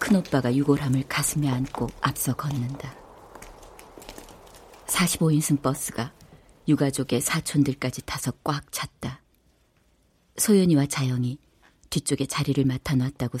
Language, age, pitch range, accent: Korean, 40-59, 125-150 Hz, native